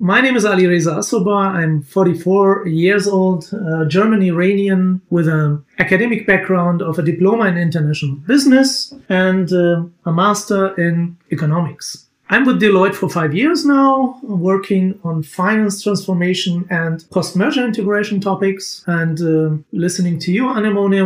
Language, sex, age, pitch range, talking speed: German, male, 40-59, 165-195 Hz, 140 wpm